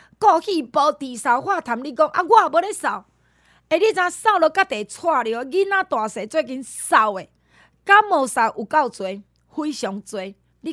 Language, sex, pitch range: Chinese, female, 230-335 Hz